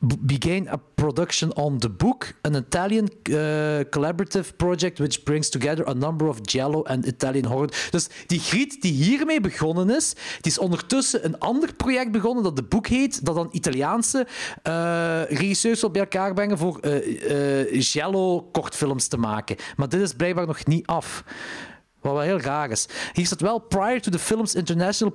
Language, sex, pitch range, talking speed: Dutch, male, 150-200 Hz, 170 wpm